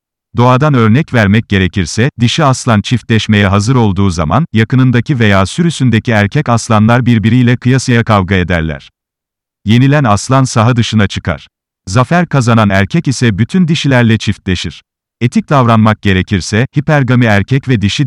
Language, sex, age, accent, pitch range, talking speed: Turkish, male, 40-59, native, 100-130 Hz, 125 wpm